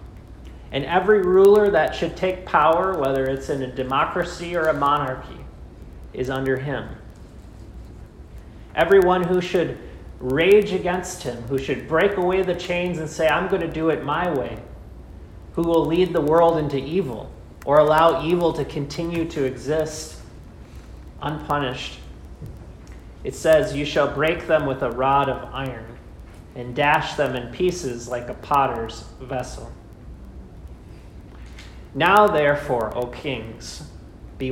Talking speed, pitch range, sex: 135 wpm, 110-165 Hz, male